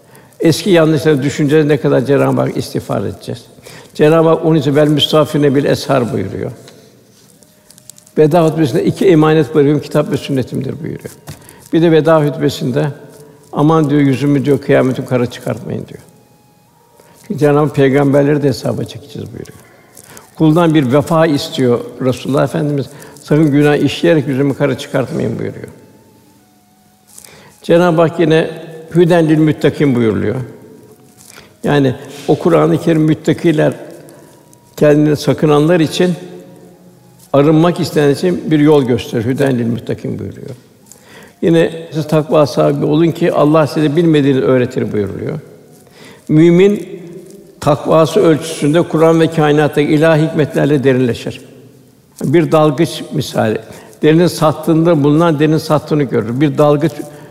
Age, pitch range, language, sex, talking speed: 60-79, 140-160 Hz, Turkish, male, 115 wpm